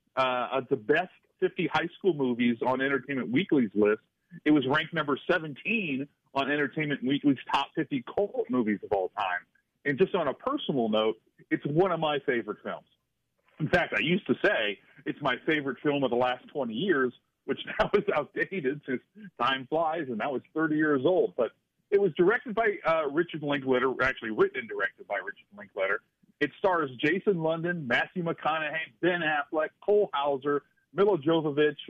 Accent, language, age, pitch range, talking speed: American, English, 40-59, 130-180 Hz, 175 wpm